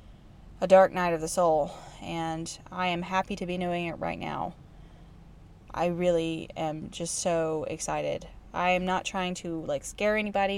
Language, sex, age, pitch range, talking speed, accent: English, female, 20-39, 180-240 Hz, 170 wpm, American